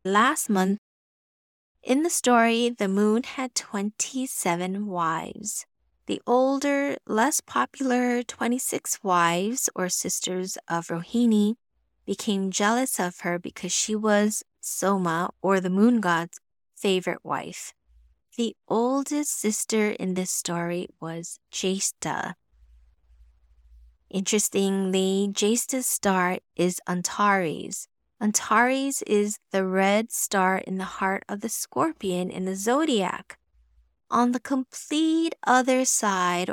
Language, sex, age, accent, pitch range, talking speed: English, female, 20-39, American, 185-240 Hz, 110 wpm